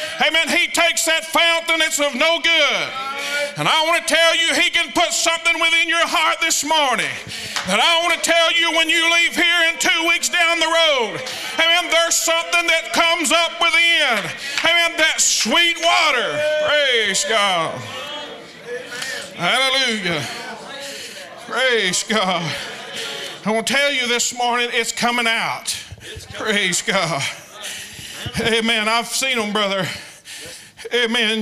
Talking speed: 140 wpm